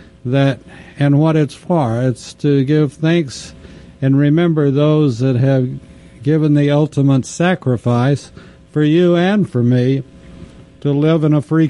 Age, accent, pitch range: 60-79, American, 130-150 Hz